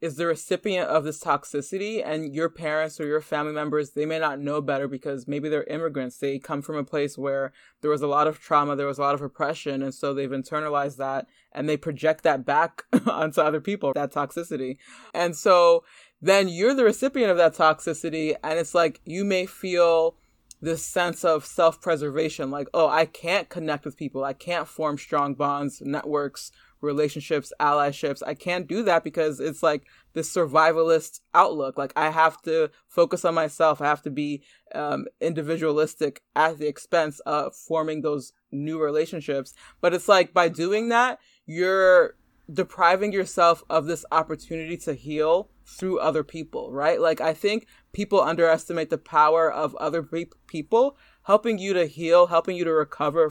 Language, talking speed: English, 175 wpm